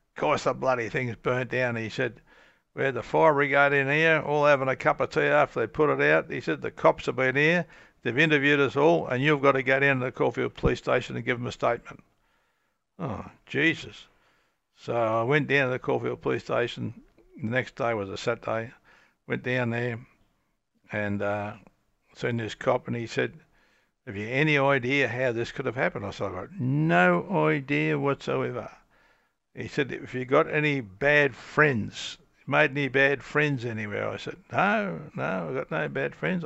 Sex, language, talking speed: male, English, 195 wpm